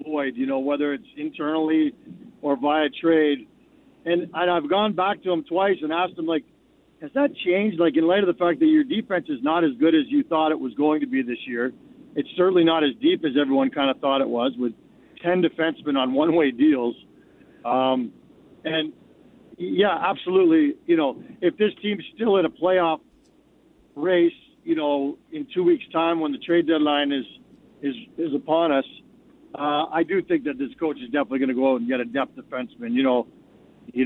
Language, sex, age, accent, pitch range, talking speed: English, male, 50-69, American, 150-210 Hz, 200 wpm